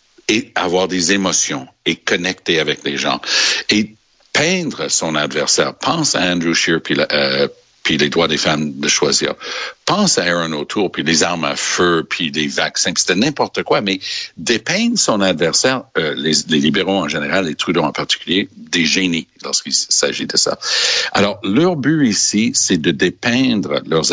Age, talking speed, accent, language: 60-79, 170 wpm, Canadian, French